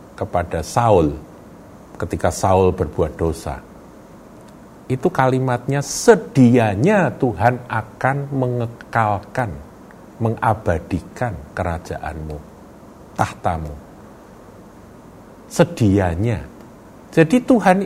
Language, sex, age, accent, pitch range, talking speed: Indonesian, male, 50-69, native, 90-135 Hz, 60 wpm